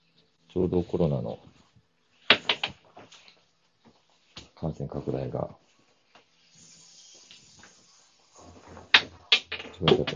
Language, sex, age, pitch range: Japanese, male, 50-69, 75-85 Hz